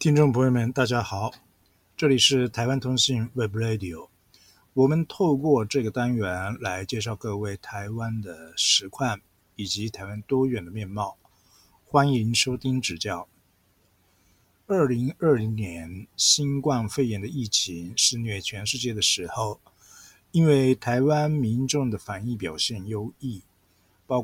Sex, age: male, 50-69